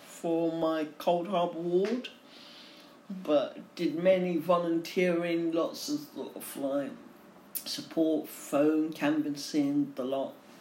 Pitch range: 170-275 Hz